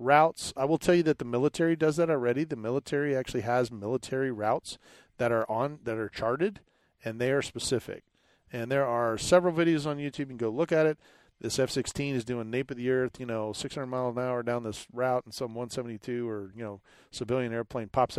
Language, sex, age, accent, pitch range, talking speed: English, male, 40-59, American, 115-145 Hz, 215 wpm